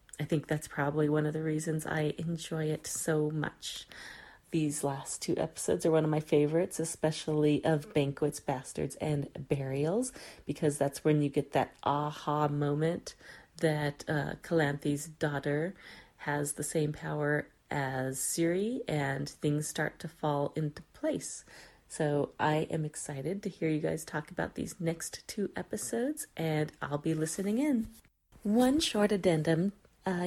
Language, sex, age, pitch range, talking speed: English, female, 30-49, 145-165 Hz, 155 wpm